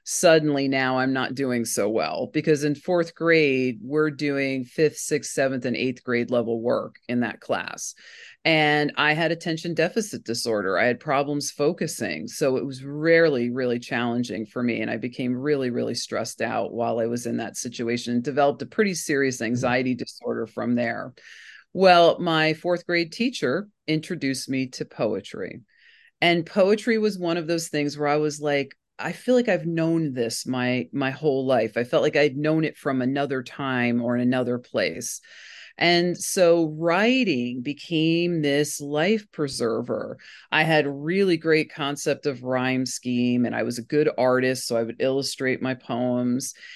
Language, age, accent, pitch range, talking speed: English, 40-59, American, 125-165 Hz, 170 wpm